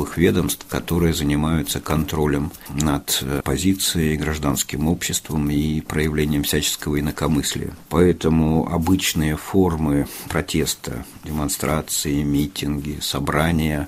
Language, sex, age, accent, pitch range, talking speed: Russian, male, 50-69, native, 75-95 Hz, 80 wpm